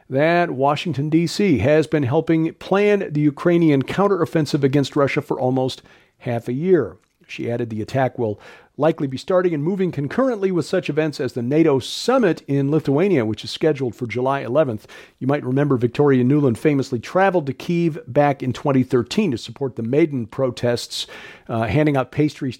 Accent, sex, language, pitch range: American, male, English, 125-155 Hz